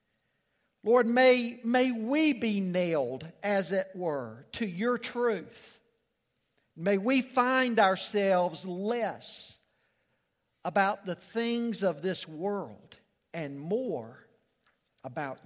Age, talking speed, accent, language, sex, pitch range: 50-69, 100 wpm, American, English, male, 185-230 Hz